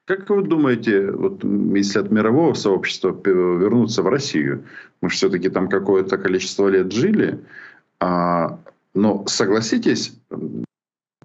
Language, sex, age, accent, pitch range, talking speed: Ukrainian, male, 50-69, native, 95-120 Hz, 115 wpm